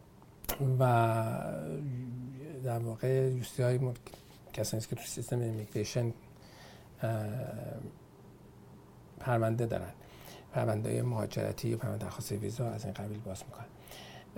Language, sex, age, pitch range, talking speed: Persian, male, 50-69, 115-135 Hz, 95 wpm